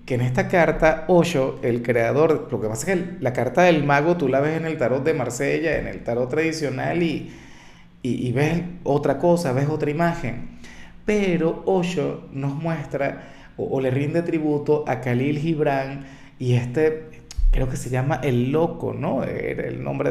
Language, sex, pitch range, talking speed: Spanish, male, 125-160 Hz, 180 wpm